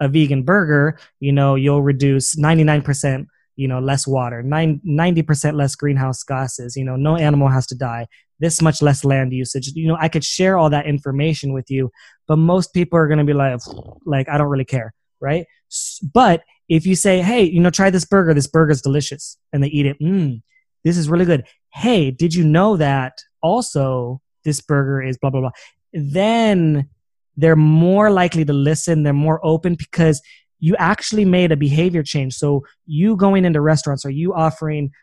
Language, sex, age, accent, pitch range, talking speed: English, male, 20-39, American, 140-175 Hz, 195 wpm